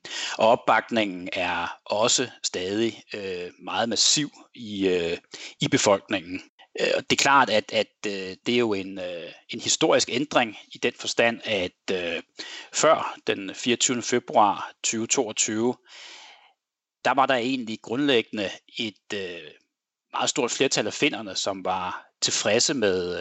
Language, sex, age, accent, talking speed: Danish, male, 30-49, native, 120 wpm